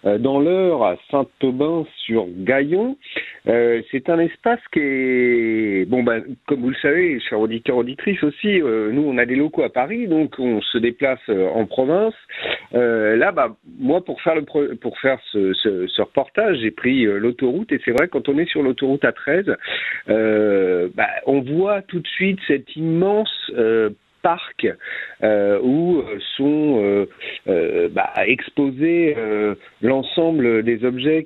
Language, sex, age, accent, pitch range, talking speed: French, male, 50-69, French, 110-155 Hz, 165 wpm